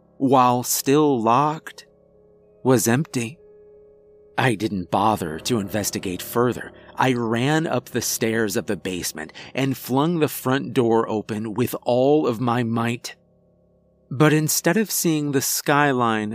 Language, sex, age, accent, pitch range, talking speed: English, male, 30-49, American, 110-135 Hz, 130 wpm